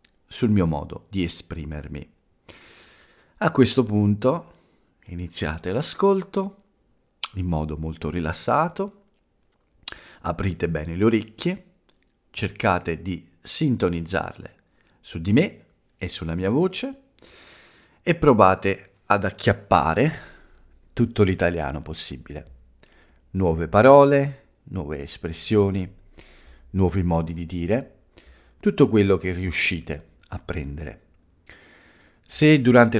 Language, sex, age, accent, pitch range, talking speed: Italian, male, 50-69, native, 85-110 Hz, 90 wpm